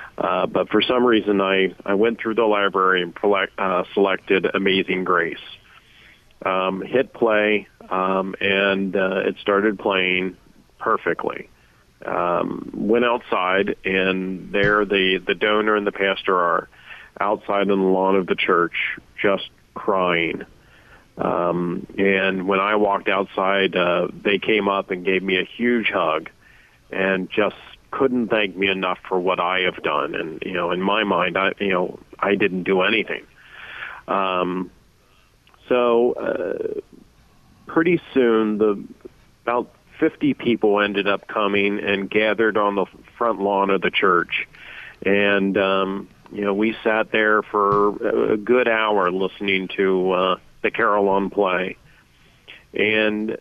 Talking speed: 145 wpm